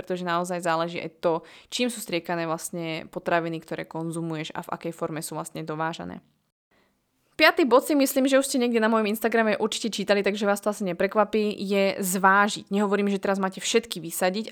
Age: 20-39